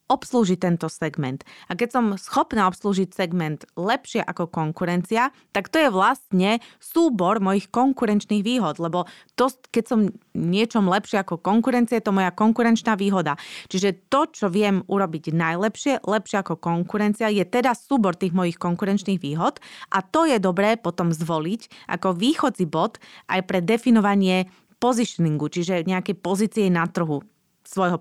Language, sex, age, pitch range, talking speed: Slovak, female, 30-49, 175-230 Hz, 145 wpm